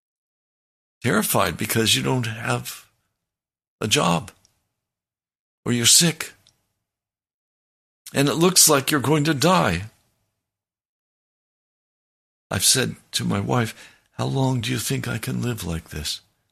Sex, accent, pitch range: male, American, 100-135 Hz